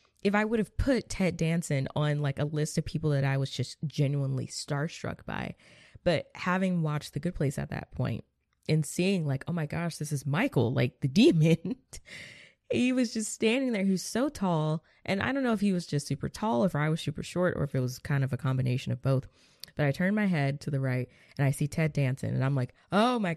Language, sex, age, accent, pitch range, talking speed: English, female, 20-39, American, 135-185 Hz, 235 wpm